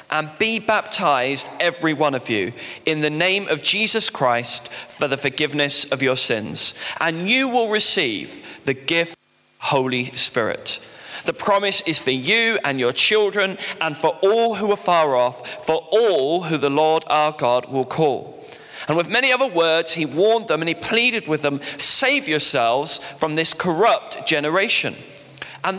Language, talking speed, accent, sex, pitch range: English, 170 wpm, British, male, 150-225 Hz